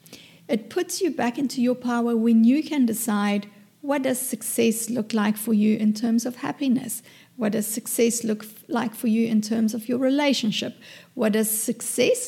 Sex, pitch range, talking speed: female, 220-265 Hz, 180 wpm